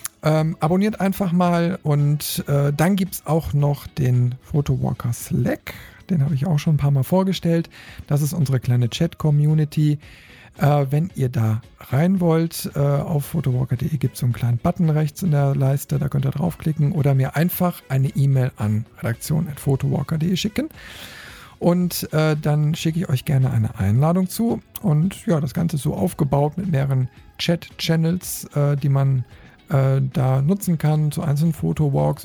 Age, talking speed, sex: 50-69, 165 wpm, male